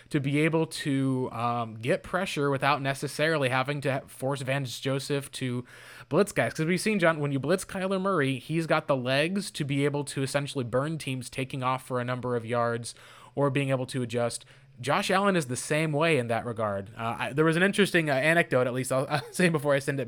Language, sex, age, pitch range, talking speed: English, male, 20-39, 130-165 Hz, 220 wpm